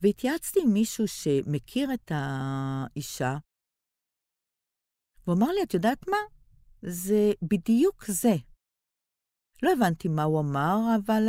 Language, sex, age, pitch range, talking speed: Hebrew, female, 50-69, 145-235 Hz, 110 wpm